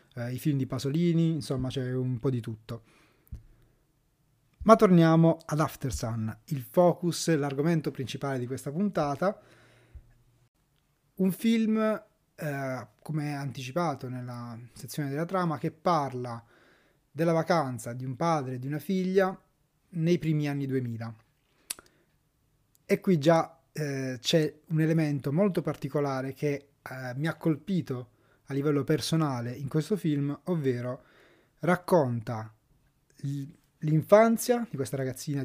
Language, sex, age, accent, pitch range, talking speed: Italian, male, 30-49, native, 130-165 Hz, 120 wpm